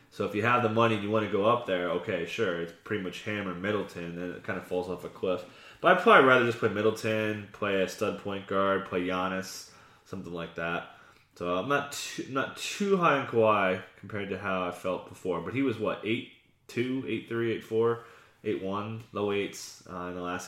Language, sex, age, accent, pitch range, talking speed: English, male, 20-39, American, 90-115 Hz, 230 wpm